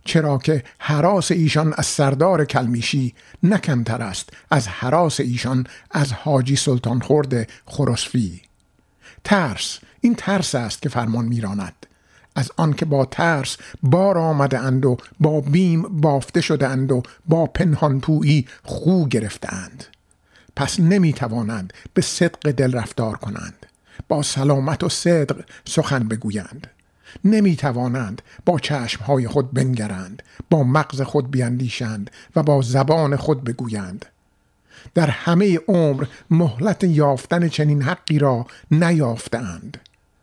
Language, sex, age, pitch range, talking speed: Persian, male, 50-69, 120-165 Hz, 120 wpm